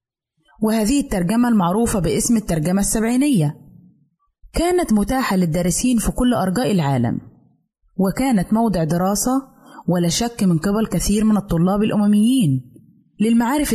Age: 20-39